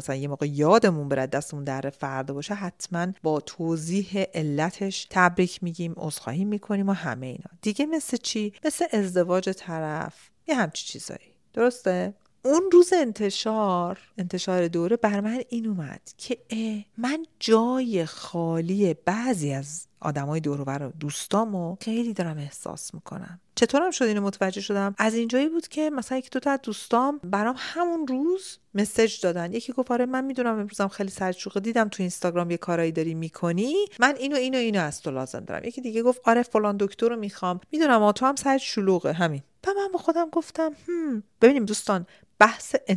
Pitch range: 170-240 Hz